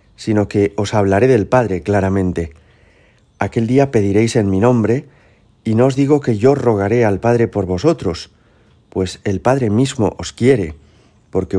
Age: 40-59